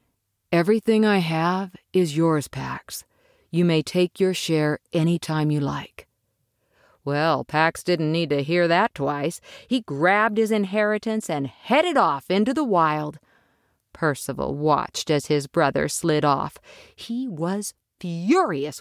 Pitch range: 150-205 Hz